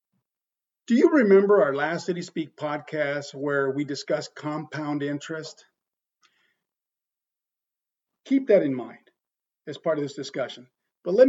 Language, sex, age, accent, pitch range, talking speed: English, male, 50-69, American, 150-210 Hz, 130 wpm